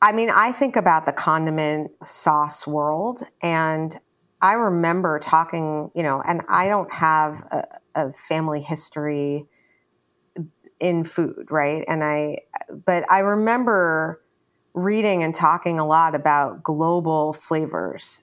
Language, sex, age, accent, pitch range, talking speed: English, female, 40-59, American, 150-175 Hz, 130 wpm